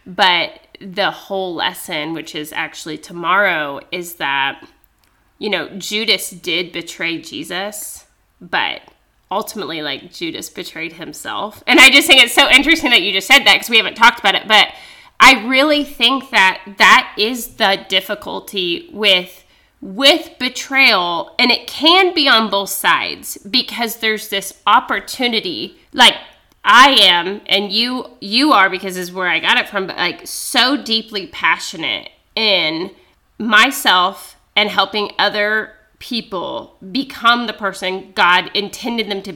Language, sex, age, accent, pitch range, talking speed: English, female, 20-39, American, 190-255 Hz, 145 wpm